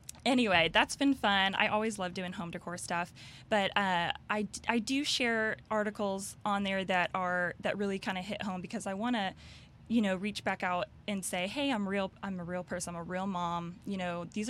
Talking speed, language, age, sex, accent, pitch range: 220 wpm, English, 20-39, female, American, 180-210 Hz